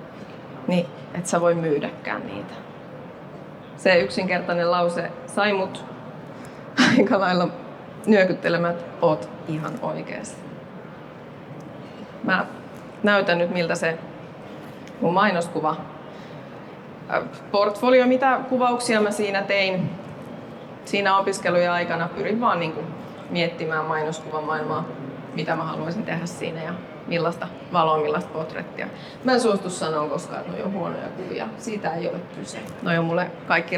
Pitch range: 165-205 Hz